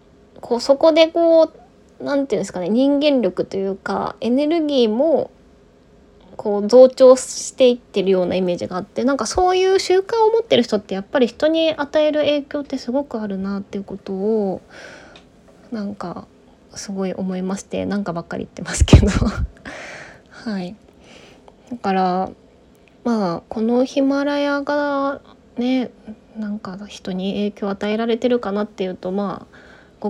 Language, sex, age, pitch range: Japanese, female, 20-39, 195-265 Hz